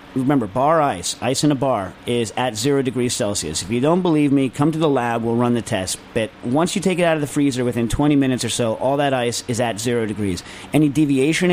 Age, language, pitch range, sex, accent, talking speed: 40-59, English, 115-145 Hz, male, American, 250 wpm